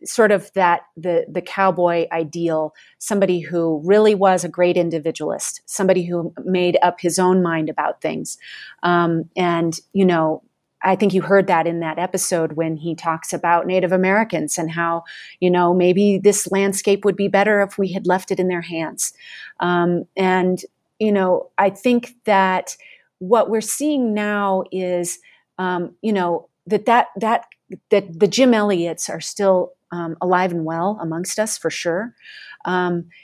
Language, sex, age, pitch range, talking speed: English, female, 30-49, 170-200 Hz, 165 wpm